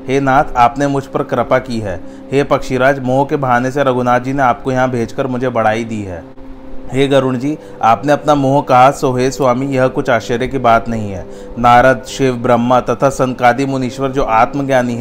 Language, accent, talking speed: Hindi, native, 190 wpm